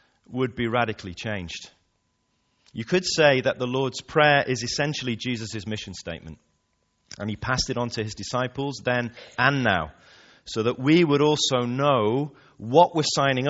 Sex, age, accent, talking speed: male, 30-49, British, 160 wpm